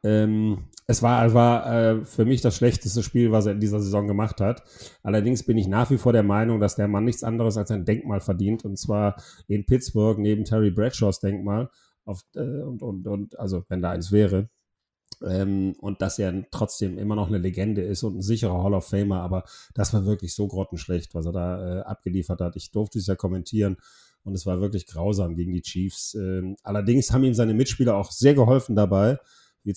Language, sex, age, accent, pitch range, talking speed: German, male, 30-49, German, 100-115 Hz, 210 wpm